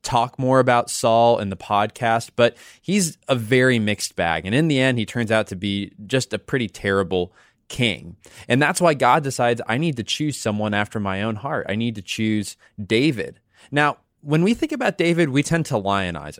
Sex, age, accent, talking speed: male, 20-39, American, 205 wpm